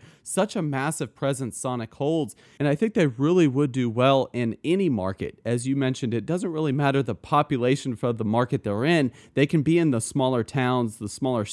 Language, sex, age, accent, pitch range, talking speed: English, male, 30-49, American, 120-150 Hz, 210 wpm